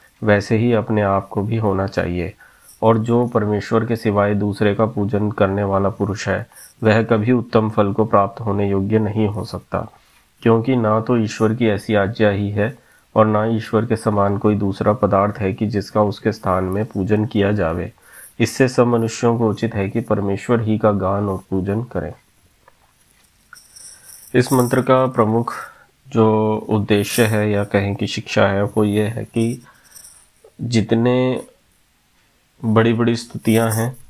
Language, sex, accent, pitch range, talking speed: Hindi, male, native, 100-115 Hz, 160 wpm